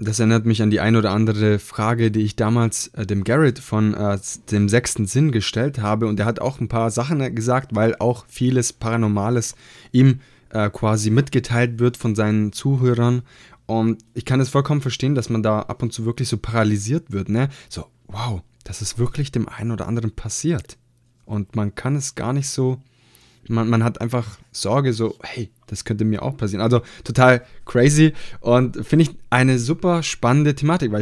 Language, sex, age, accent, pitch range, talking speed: German, male, 20-39, German, 110-135 Hz, 190 wpm